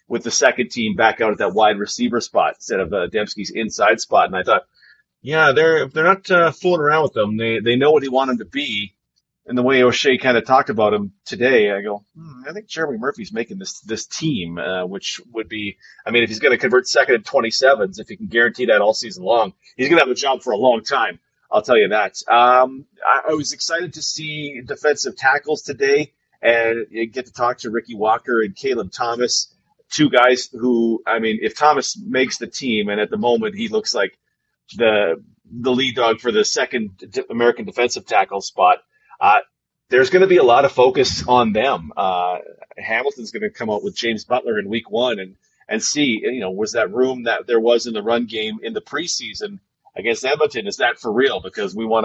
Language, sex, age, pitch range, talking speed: English, male, 30-49, 115-195 Hz, 220 wpm